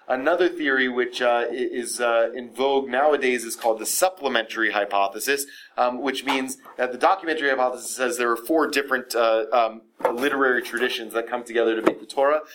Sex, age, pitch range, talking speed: male, 30-49, 130-170 Hz, 175 wpm